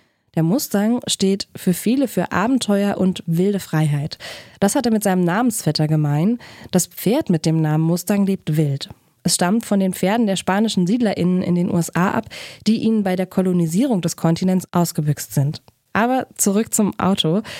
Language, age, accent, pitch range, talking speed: German, 20-39, German, 170-215 Hz, 170 wpm